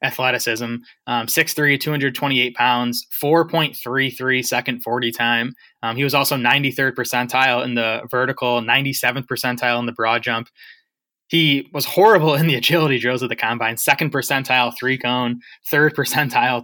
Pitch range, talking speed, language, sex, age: 120-140 Hz, 155 wpm, English, male, 20-39